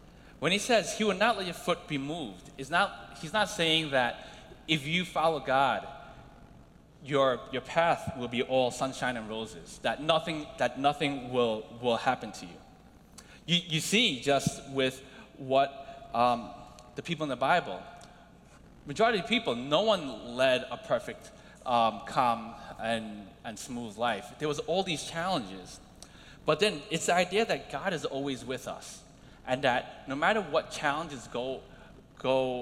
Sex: male